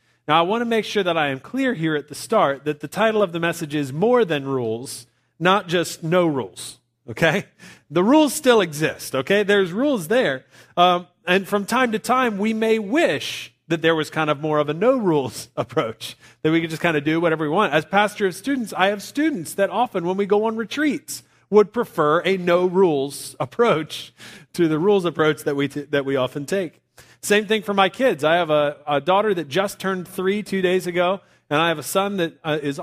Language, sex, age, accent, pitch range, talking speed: English, male, 40-59, American, 150-205 Hz, 220 wpm